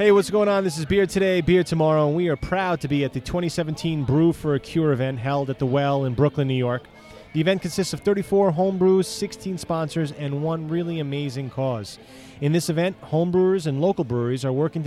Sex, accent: male, American